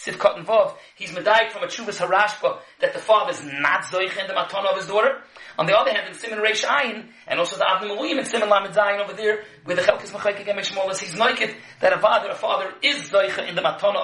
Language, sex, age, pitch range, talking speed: English, male, 30-49, 190-245 Hz, 240 wpm